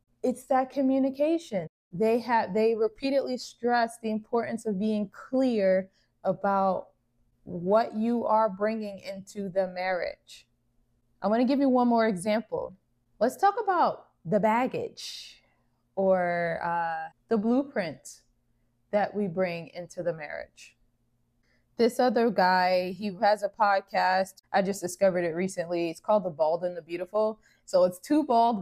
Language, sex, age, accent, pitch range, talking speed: English, female, 20-39, American, 170-220 Hz, 140 wpm